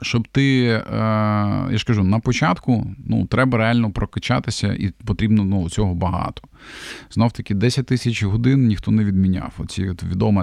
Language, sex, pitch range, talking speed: Ukrainian, male, 100-120 Hz, 145 wpm